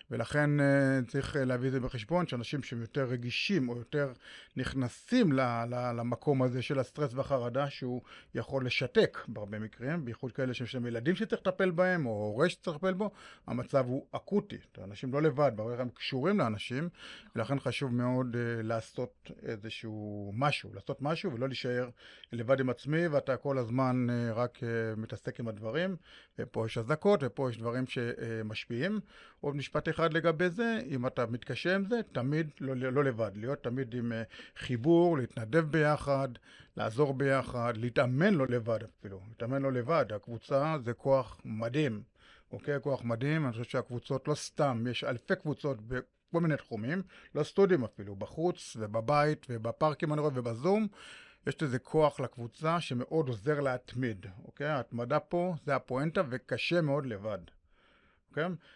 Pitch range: 120-150 Hz